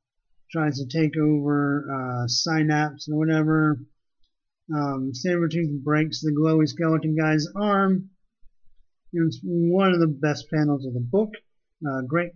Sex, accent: male, American